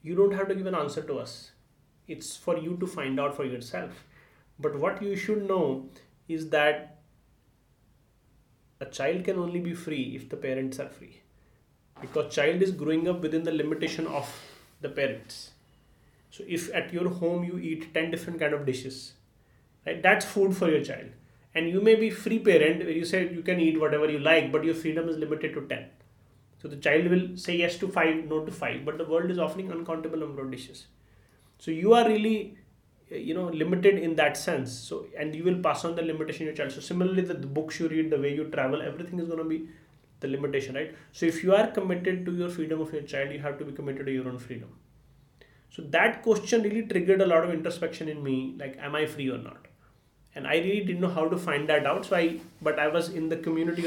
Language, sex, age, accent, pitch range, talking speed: English, male, 30-49, Indian, 145-175 Hz, 225 wpm